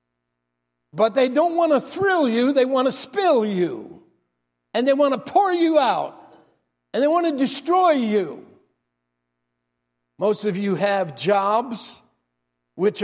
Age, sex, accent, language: 60-79, male, American, English